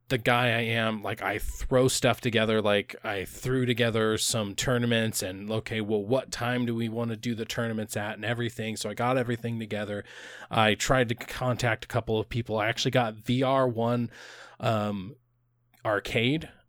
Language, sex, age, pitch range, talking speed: English, male, 20-39, 110-130 Hz, 180 wpm